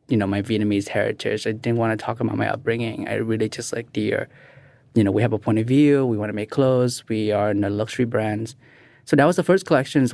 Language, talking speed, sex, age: English, 255 wpm, male, 20-39